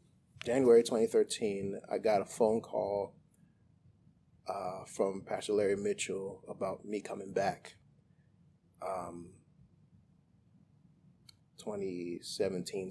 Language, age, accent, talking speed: English, 20-39, American, 85 wpm